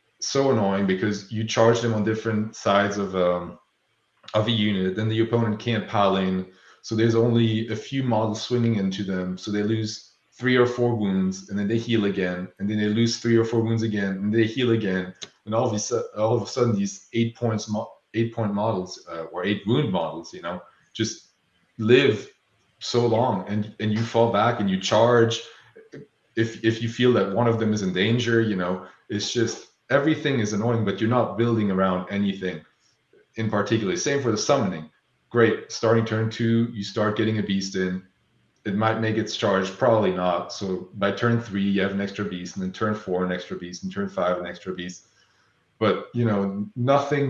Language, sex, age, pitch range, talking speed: English, male, 30-49, 95-115 Hz, 205 wpm